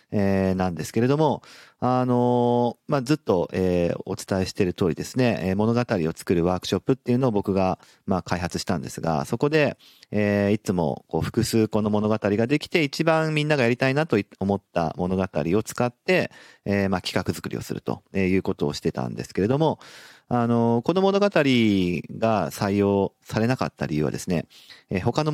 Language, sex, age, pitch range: Japanese, male, 40-59, 95-130 Hz